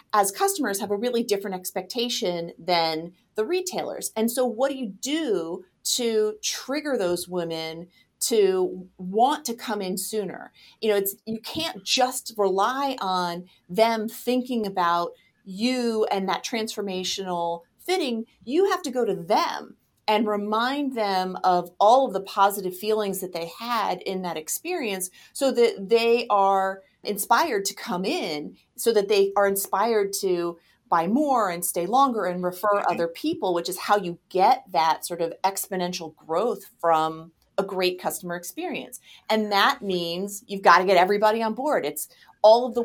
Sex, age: female, 30-49